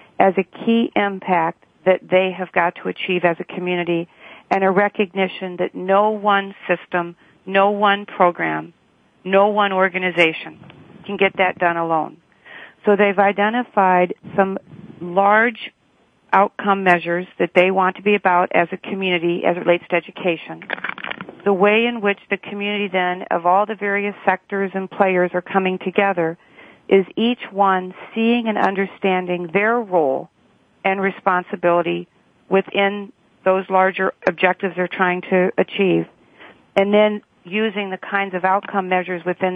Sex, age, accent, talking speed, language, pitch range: female, 50-69, American, 145 wpm, English, 180-200 Hz